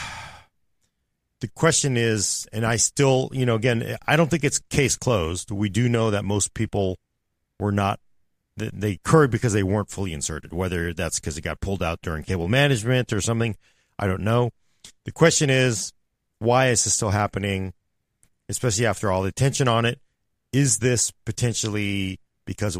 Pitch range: 95-125 Hz